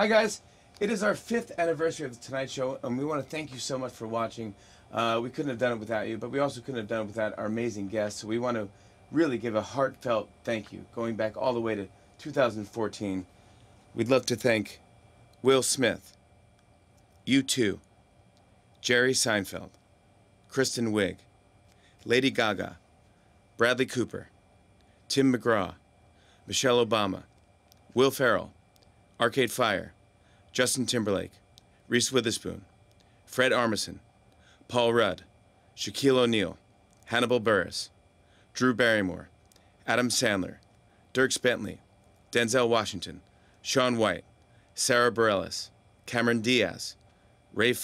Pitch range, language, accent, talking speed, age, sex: 100-120 Hz, English, American, 135 wpm, 30-49, male